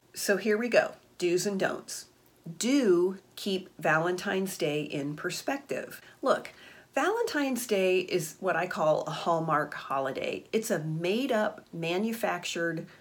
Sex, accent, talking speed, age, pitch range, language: female, American, 130 wpm, 40-59, 165-215 Hz, English